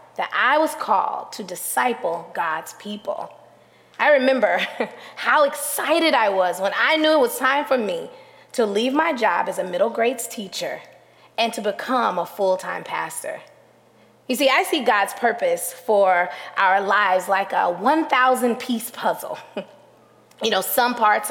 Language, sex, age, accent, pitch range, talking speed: English, female, 20-39, American, 205-275 Hz, 150 wpm